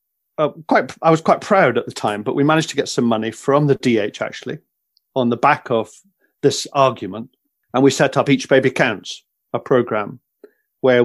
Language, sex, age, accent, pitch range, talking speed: English, male, 50-69, British, 120-160 Hz, 195 wpm